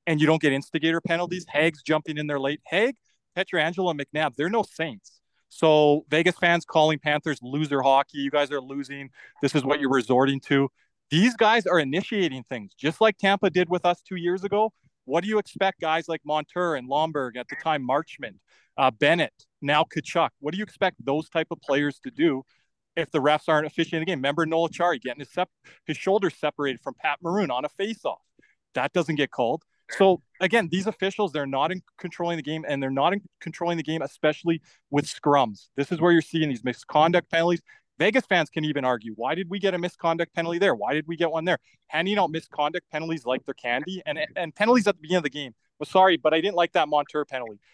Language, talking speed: English, 215 wpm